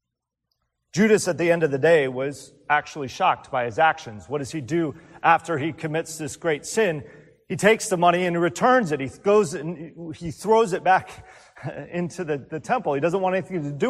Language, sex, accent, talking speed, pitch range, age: English, male, American, 200 wpm, 120-180 Hz, 40-59